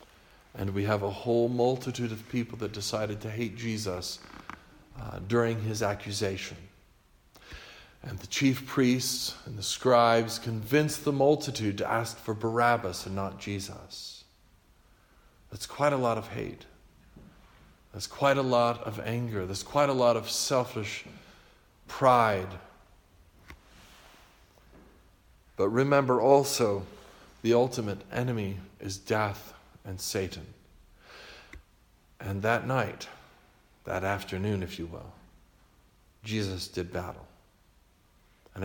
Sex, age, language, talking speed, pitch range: male, 50-69, English, 120 wpm, 90-115 Hz